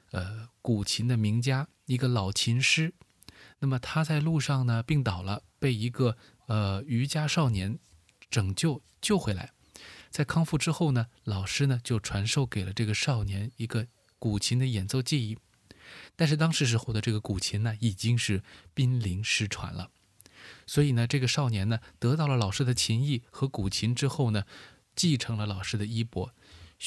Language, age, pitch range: Chinese, 20-39, 105-130 Hz